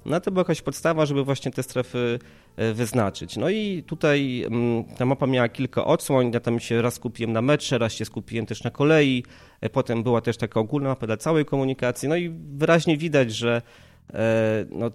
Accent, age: native, 20-39